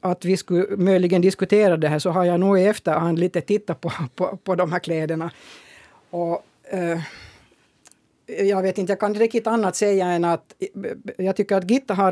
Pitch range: 165-195 Hz